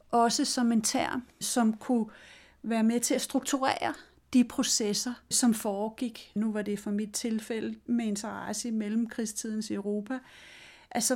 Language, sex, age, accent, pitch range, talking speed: Danish, female, 40-59, native, 220-260 Hz, 145 wpm